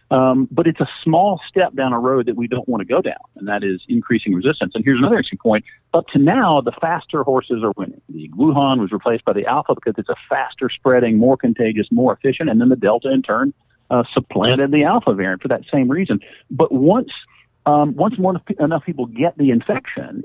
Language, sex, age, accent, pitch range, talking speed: English, male, 50-69, American, 115-145 Hz, 220 wpm